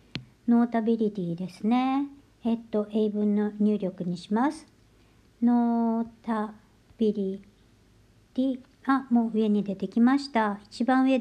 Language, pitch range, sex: Japanese, 205-260 Hz, male